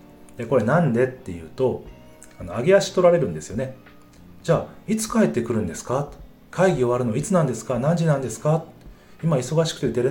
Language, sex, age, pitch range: Japanese, male, 30-49, 100-155 Hz